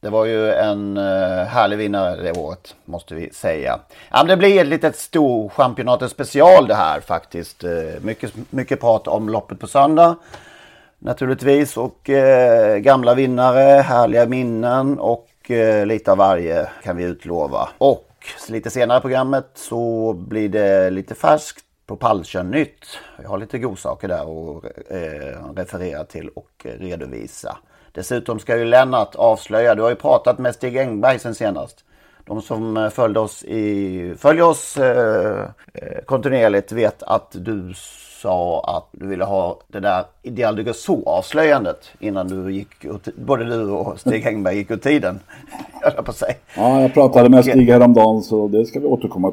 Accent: native